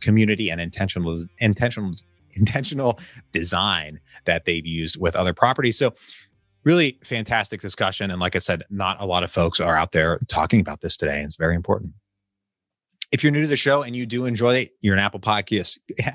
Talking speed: 180 wpm